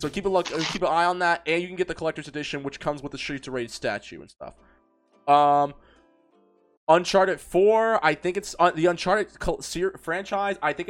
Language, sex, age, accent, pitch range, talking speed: English, male, 20-39, American, 155-210 Hz, 220 wpm